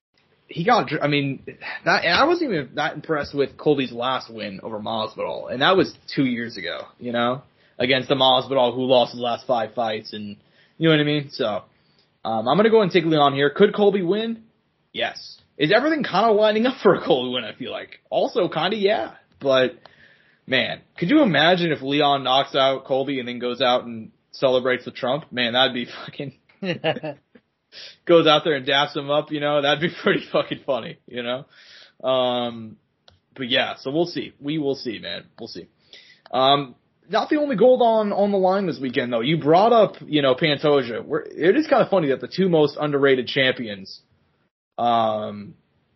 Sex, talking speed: male, 195 wpm